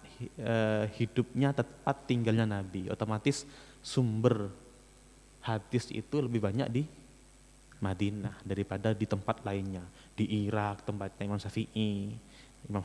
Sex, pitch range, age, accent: male, 105-140 Hz, 20-39, native